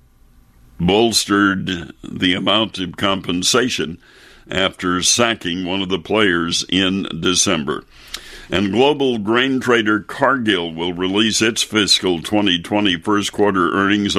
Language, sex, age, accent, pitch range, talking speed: English, male, 60-79, American, 90-110 Hz, 110 wpm